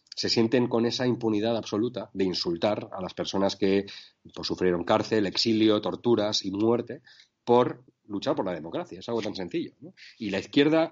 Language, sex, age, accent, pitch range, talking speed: Spanish, male, 40-59, Spanish, 95-115 Hz, 175 wpm